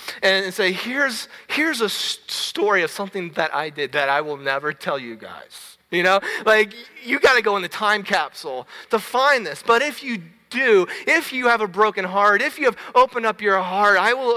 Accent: American